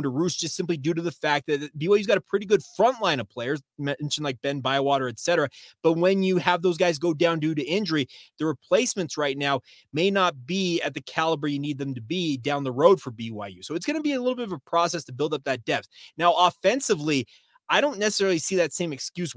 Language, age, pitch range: English, 30-49, 140-175 Hz